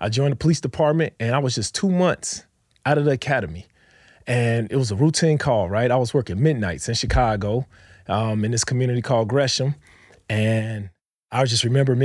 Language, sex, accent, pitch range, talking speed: English, male, American, 110-140 Hz, 195 wpm